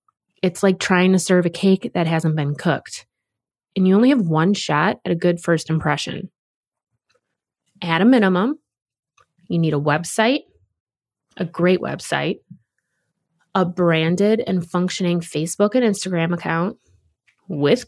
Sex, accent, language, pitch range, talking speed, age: female, American, English, 165-205 Hz, 140 wpm, 20-39